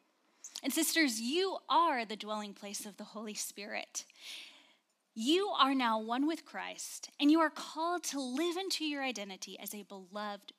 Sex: female